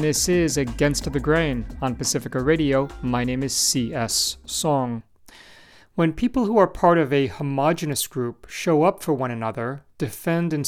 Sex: male